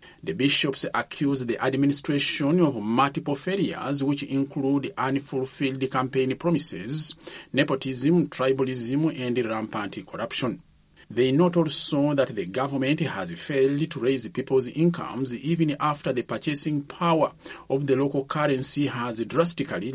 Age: 40-59